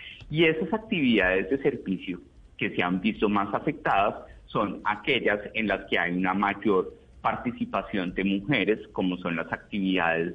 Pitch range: 95-140 Hz